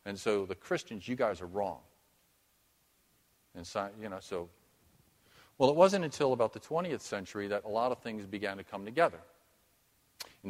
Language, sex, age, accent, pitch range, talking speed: English, male, 40-59, American, 105-135 Hz, 175 wpm